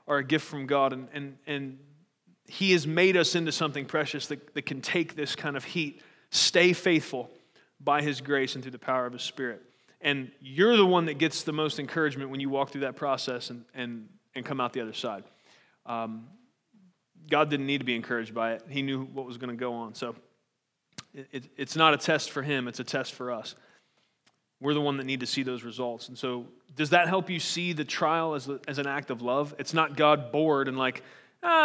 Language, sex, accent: English, male, American